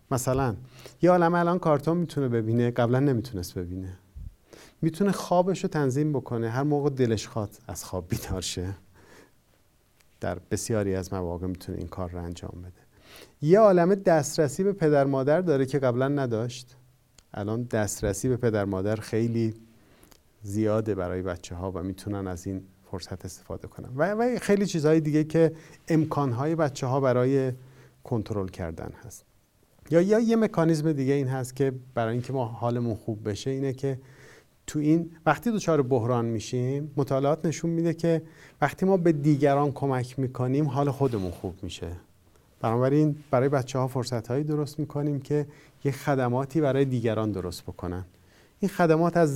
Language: Persian